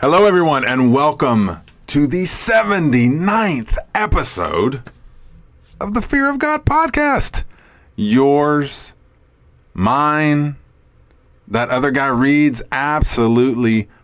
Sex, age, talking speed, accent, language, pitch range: male, 30-49, 90 wpm, American, English, 90-140 Hz